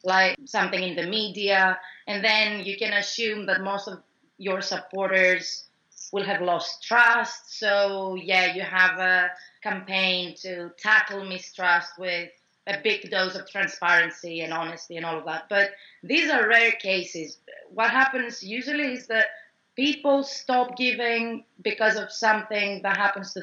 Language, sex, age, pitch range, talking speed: English, female, 30-49, 185-220 Hz, 150 wpm